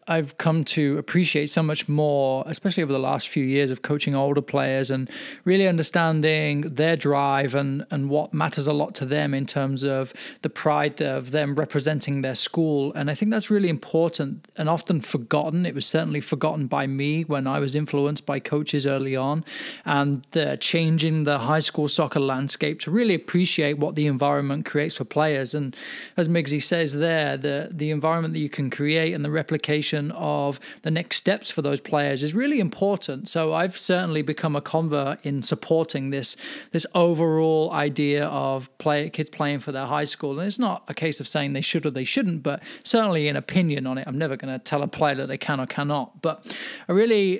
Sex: male